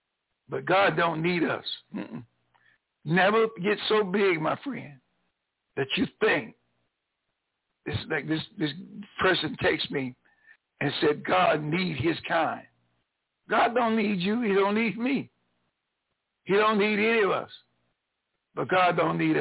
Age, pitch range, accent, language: 60-79, 130-210 Hz, American, English